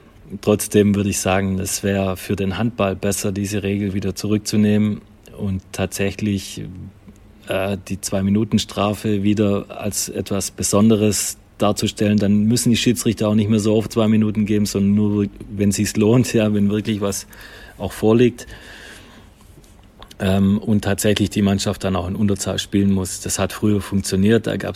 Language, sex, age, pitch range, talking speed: German, male, 30-49, 100-110 Hz, 160 wpm